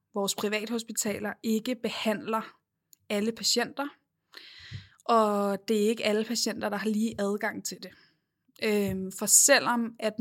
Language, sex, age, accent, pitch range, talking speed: Danish, female, 20-39, native, 205-235 Hz, 125 wpm